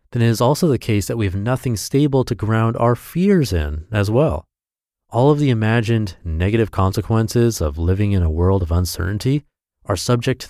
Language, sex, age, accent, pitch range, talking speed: English, male, 30-49, American, 95-130 Hz, 195 wpm